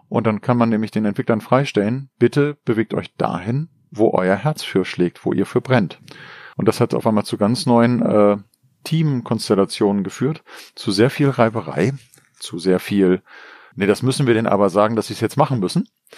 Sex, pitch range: male, 105-125 Hz